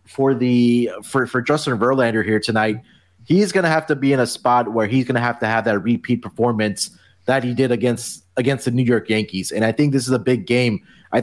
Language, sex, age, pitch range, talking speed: English, male, 30-49, 110-135 Hz, 240 wpm